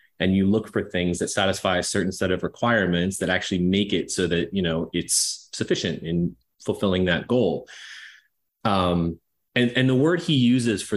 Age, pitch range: 30-49, 90-110 Hz